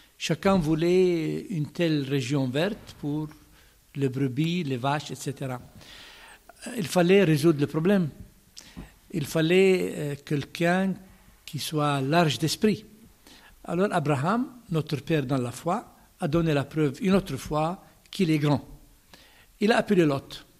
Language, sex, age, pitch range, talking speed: French, male, 60-79, 140-185 Hz, 130 wpm